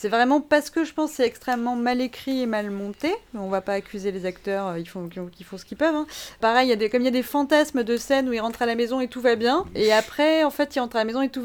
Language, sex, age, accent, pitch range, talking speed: French, female, 30-49, French, 210-270 Hz, 330 wpm